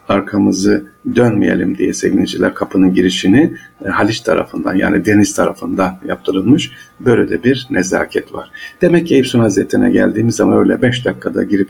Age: 50-69